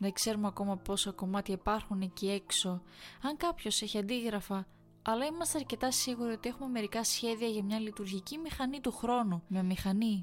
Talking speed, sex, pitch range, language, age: 165 wpm, female, 185-230 Hz, Greek, 20-39